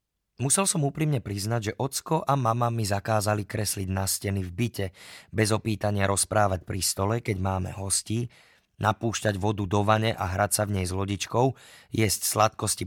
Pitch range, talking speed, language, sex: 100-125 Hz, 170 wpm, Slovak, male